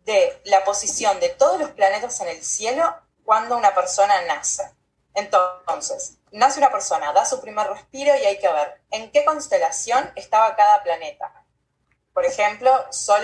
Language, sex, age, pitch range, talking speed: Spanish, female, 20-39, 195-265 Hz, 160 wpm